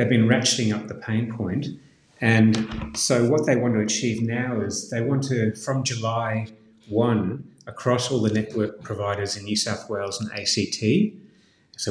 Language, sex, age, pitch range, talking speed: English, male, 30-49, 105-115 Hz, 170 wpm